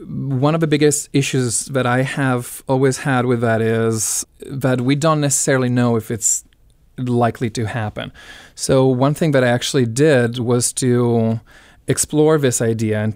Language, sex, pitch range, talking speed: English, male, 115-135 Hz, 165 wpm